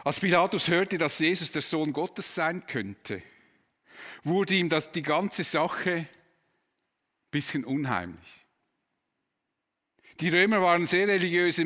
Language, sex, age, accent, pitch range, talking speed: German, male, 50-69, Austrian, 165-205 Hz, 120 wpm